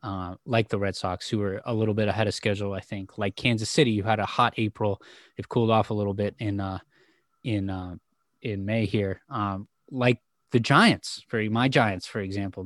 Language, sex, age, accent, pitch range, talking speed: English, male, 20-39, American, 105-120 Hz, 215 wpm